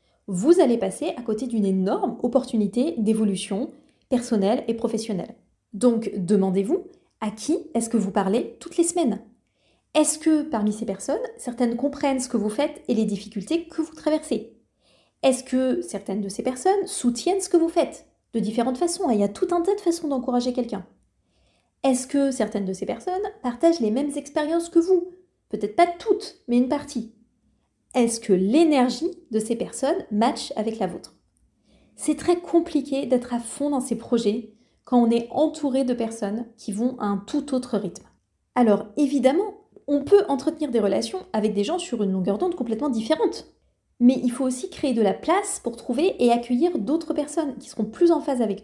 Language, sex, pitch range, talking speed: French, female, 225-315 Hz, 185 wpm